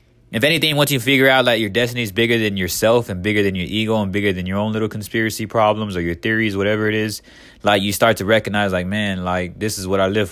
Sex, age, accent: male, 20-39, American